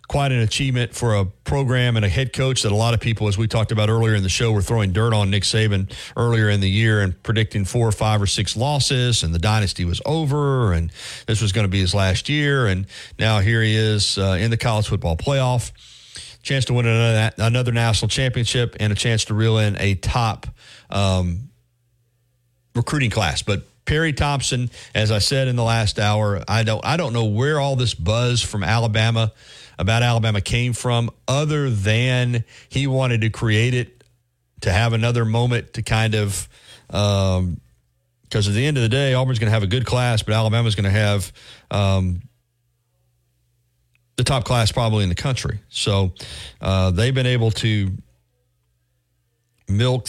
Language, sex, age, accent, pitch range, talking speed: English, male, 40-59, American, 100-120 Hz, 190 wpm